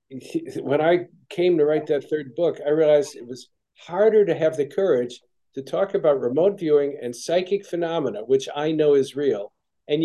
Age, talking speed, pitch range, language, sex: 50-69, 185 wpm, 135-185 Hz, English, male